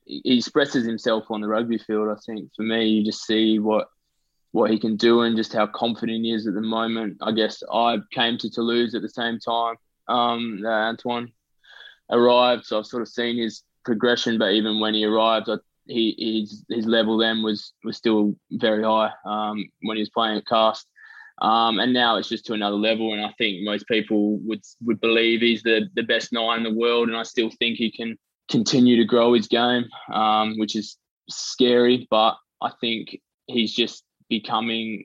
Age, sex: 20-39, male